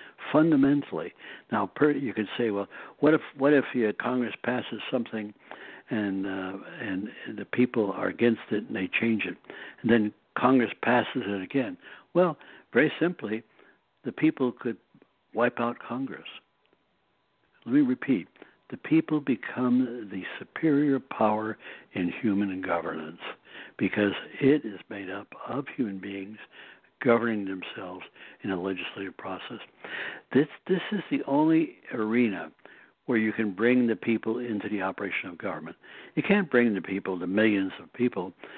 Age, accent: 60-79, American